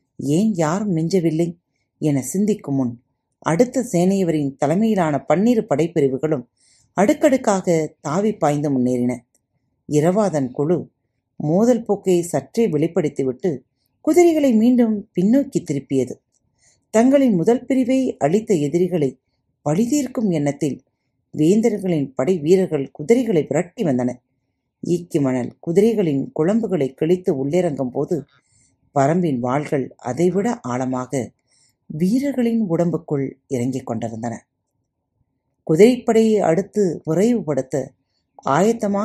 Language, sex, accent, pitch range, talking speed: Tamil, female, native, 130-205 Hz, 85 wpm